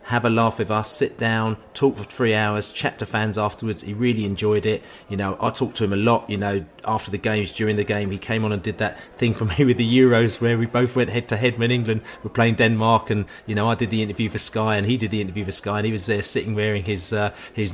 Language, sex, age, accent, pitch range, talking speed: English, male, 30-49, British, 100-120 Hz, 285 wpm